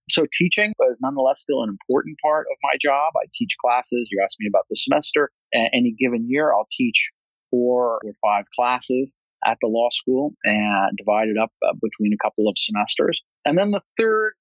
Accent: American